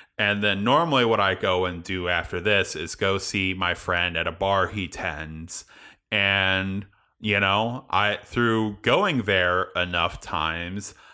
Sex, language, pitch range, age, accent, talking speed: male, English, 95-110 Hz, 30-49, American, 155 wpm